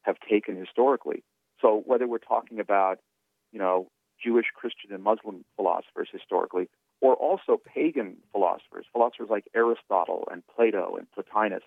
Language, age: English, 40-59